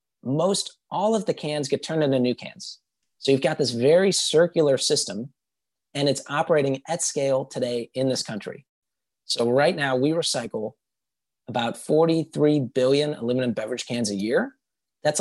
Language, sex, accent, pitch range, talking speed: English, male, American, 125-160 Hz, 160 wpm